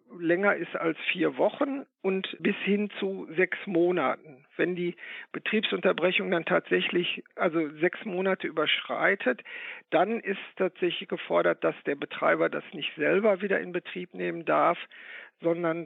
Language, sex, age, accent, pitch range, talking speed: German, male, 50-69, German, 165-210 Hz, 135 wpm